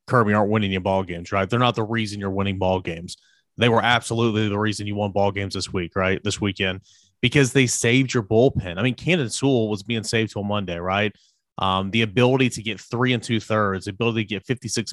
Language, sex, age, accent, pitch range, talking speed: English, male, 30-49, American, 100-120 Hz, 235 wpm